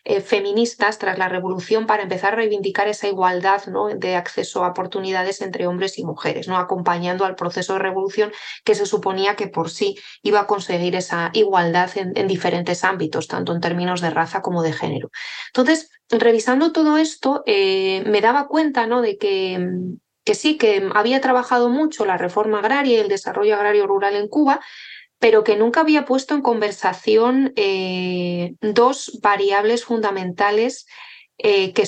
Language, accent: English, Spanish